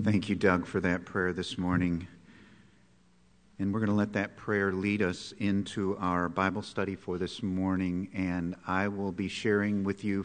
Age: 50-69